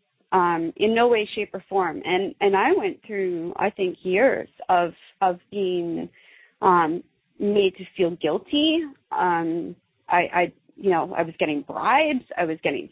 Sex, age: female, 30-49